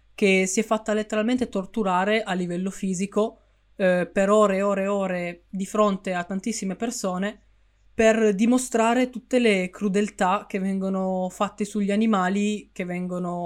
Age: 20-39